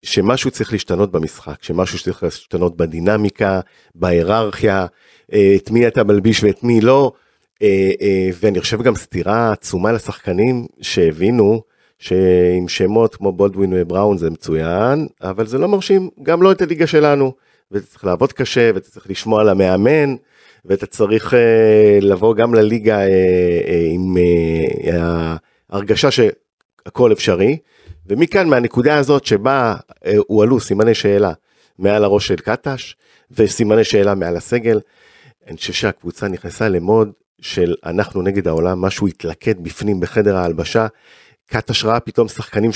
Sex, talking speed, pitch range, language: male, 130 wpm, 95-125 Hz, Hebrew